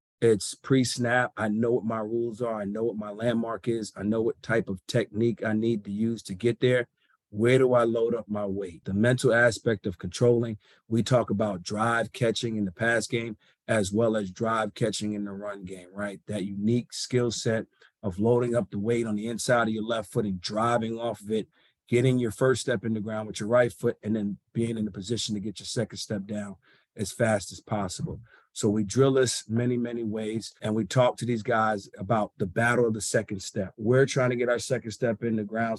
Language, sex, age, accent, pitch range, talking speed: English, male, 40-59, American, 105-120 Hz, 230 wpm